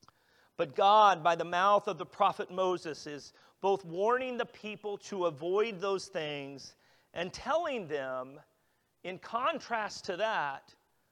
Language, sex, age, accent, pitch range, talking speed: English, male, 40-59, American, 170-215 Hz, 135 wpm